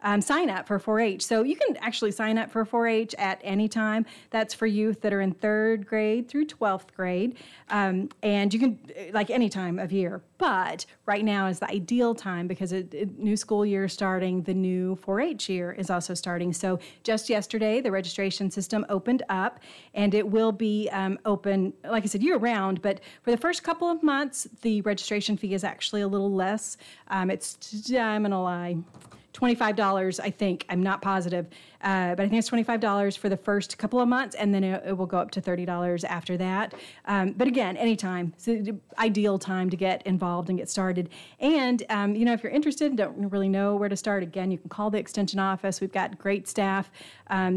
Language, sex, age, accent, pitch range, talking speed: English, female, 30-49, American, 190-220 Hz, 205 wpm